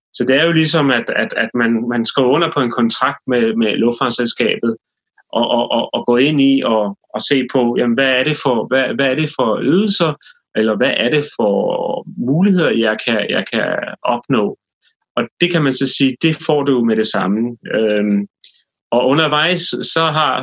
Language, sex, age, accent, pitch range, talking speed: Danish, male, 30-49, native, 115-150 Hz, 190 wpm